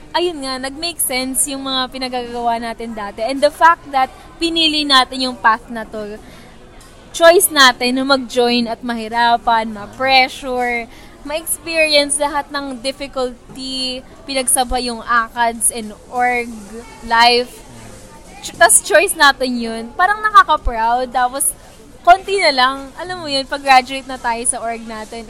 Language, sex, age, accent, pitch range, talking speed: Filipino, female, 20-39, native, 230-275 Hz, 130 wpm